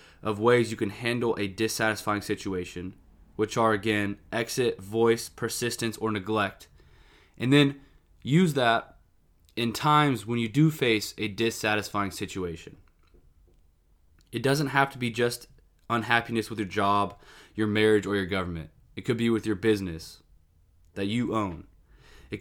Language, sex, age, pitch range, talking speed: English, male, 20-39, 85-120 Hz, 145 wpm